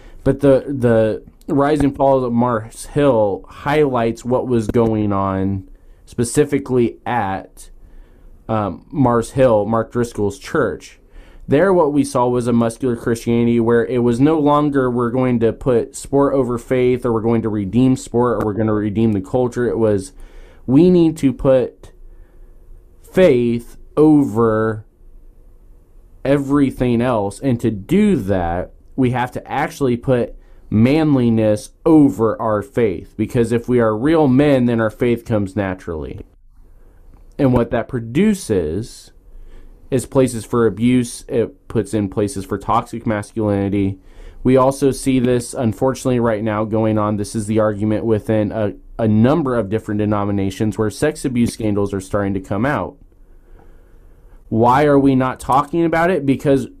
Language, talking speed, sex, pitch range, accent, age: English, 150 wpm, male, 100-130 Hz, American, 20-39